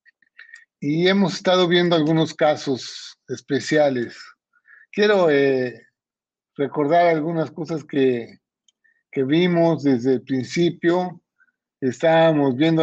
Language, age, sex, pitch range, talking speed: Spanish, 50-69, male, 140-175 Hz, 95 wpm